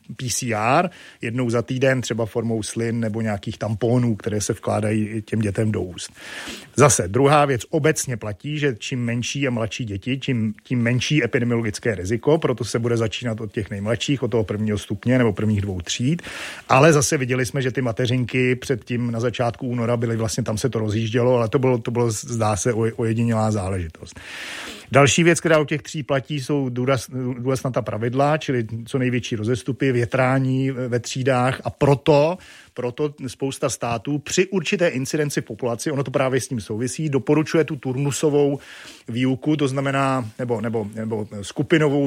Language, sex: Czech, male